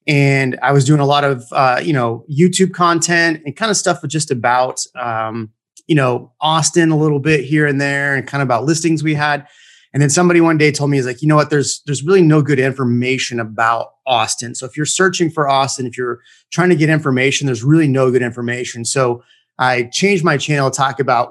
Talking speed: 230 wpm